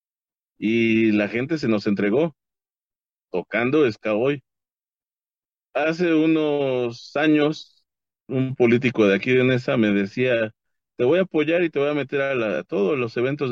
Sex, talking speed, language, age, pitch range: male, 155 wpm, Spanish, 40-59, 110-140 Hz